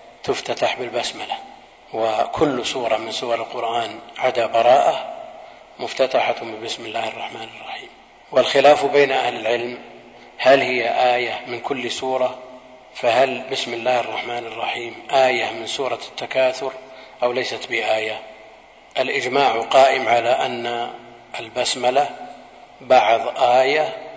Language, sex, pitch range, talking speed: Arabic, male, 120-145 Hz, 105 wpm